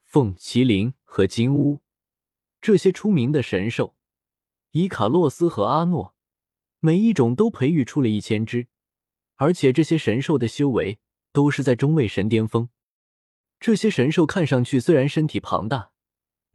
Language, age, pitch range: Chinese, 20-39, 115-170 Hz